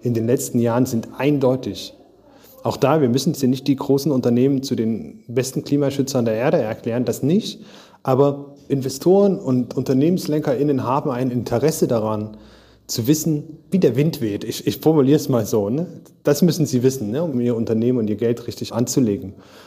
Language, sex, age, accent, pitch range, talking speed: German, male, 30-49, German, 120-150 Hz, 175 wpm